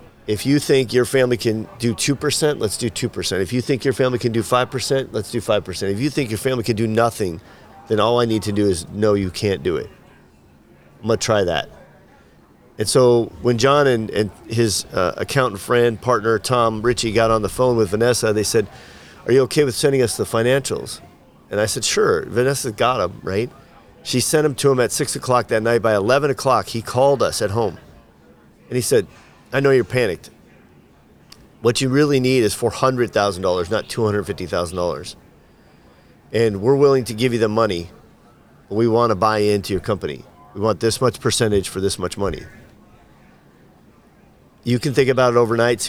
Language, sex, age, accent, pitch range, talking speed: English, male, 40-59, American, 105-125 Hz, 195 wpm